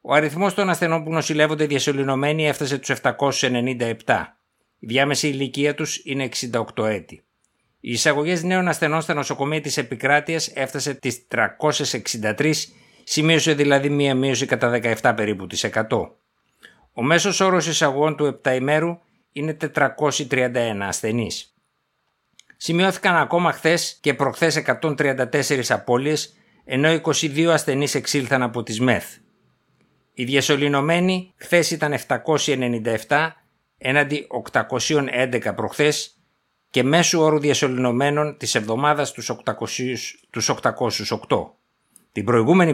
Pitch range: 125-155 Hz